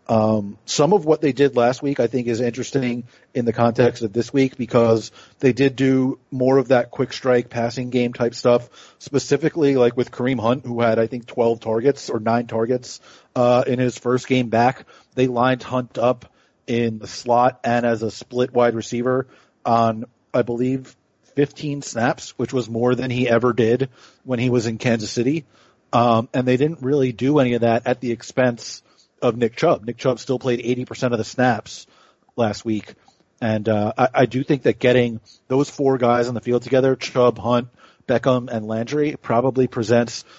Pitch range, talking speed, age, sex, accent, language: 115-130 Hz, 190 wpm, 40-59, male, American, English